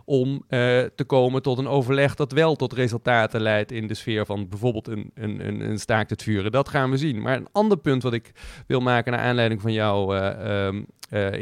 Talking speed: 220 wpm